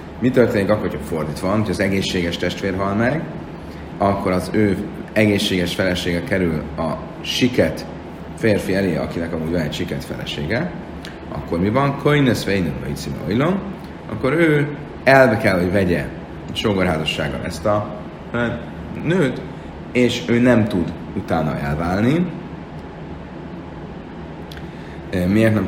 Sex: male